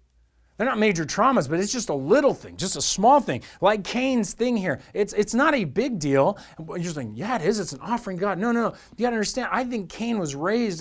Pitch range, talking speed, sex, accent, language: 145-230 Hz, 260 wpm, male, American, English